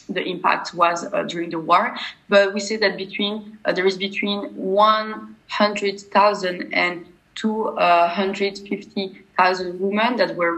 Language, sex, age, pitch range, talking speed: English, female, 20-39, 185-215 Hz, 125 wpm